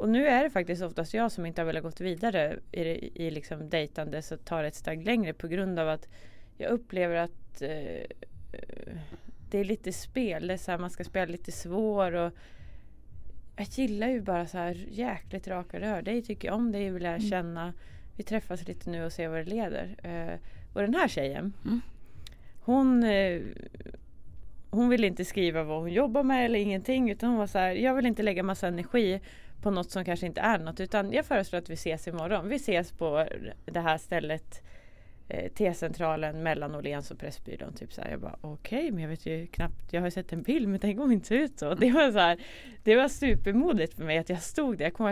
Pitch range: 165-230 Hz